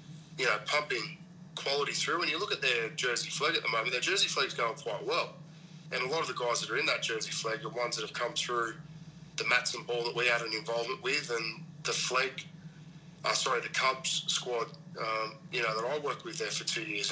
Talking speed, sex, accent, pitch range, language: 235 wpm, male, Australian, 145-165 Hz, English